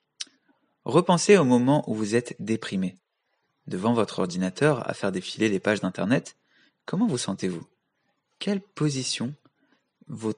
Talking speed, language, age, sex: 135 wpm, French, 20-39, male